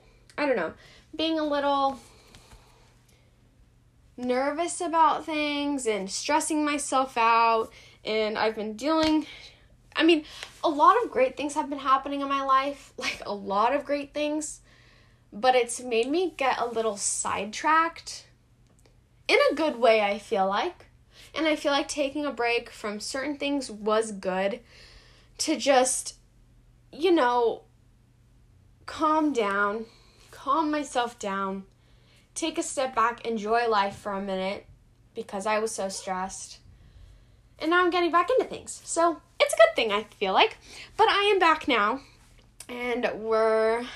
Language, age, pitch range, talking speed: English, 10-29, 205-300 Hz, 145 wpm